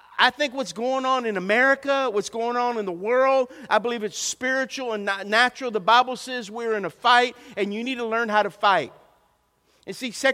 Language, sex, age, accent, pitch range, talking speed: English, male, 50-69, American, 165-245 Hz, 220 wpm